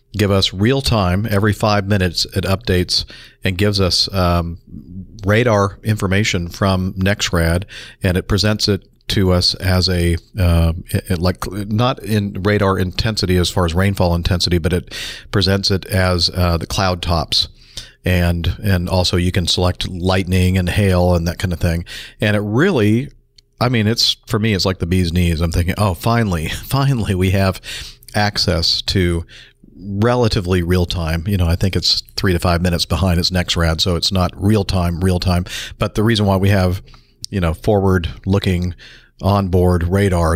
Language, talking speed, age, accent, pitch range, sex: English, 170 wpm, 40-59, American, 90-105 Hz, male